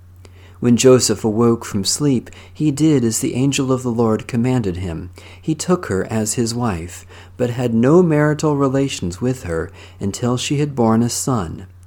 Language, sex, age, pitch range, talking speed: English, male, 50-69, 95-135 Hz, 170 wpm